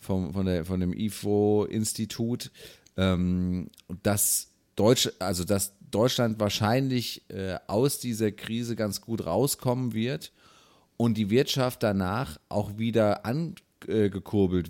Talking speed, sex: 110 wpm, male